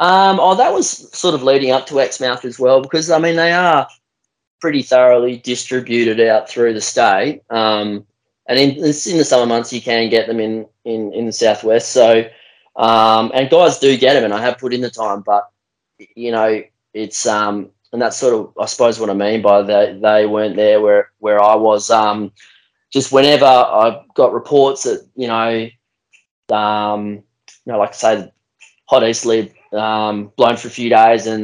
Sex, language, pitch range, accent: male, English, 110-125 Hz, Australian